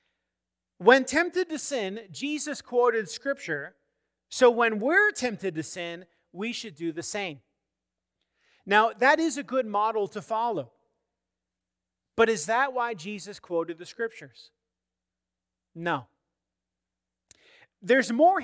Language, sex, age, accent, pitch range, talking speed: English, male, 40-59, American, 175-240 Hz, 120 wpm